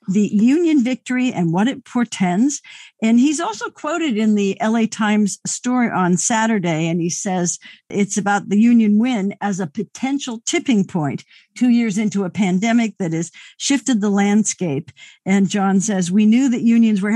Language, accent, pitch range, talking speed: English, American, 185-230 Hz, 170 wpm